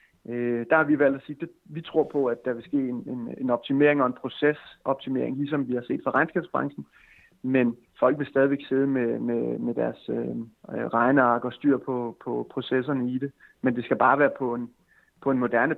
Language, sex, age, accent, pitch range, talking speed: Danish, male, 30-49, native, 125-145 Hz, 210 wpm